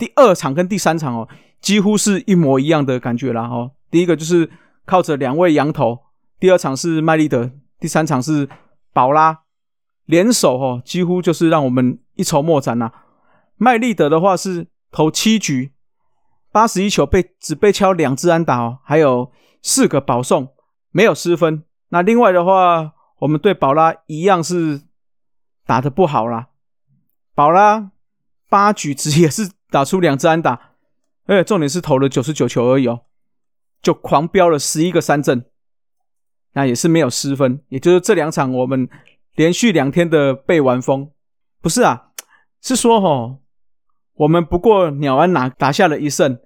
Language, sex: Chinese, male